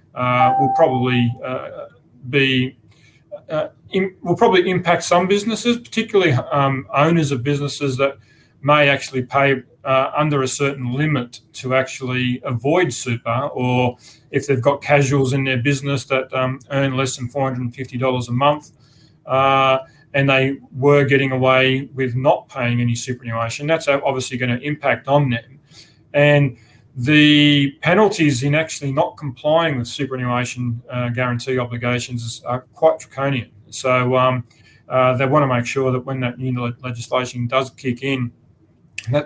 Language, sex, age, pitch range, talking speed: English, male, 30-49, 125-140 Hz, 150 wpm